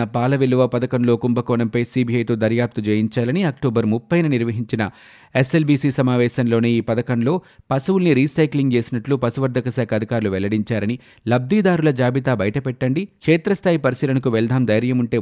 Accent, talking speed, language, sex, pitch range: native, 115 wpm, Telugu, male, 115-135 Hz